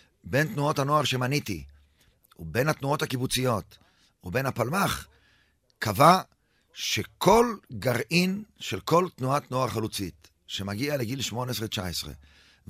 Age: 50-69